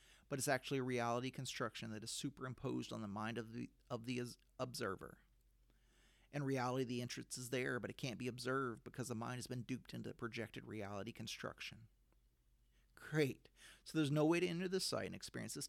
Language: English